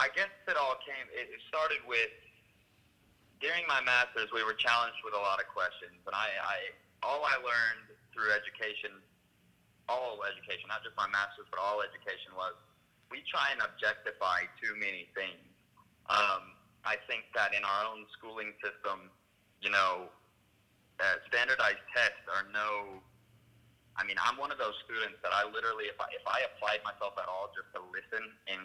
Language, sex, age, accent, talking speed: English, male, 30-49, American, 175 wpm